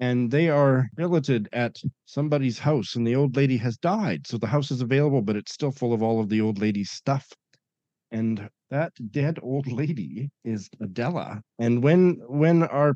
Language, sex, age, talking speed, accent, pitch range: English, male, 40-59, 185 wpm, American, 120-170 Hz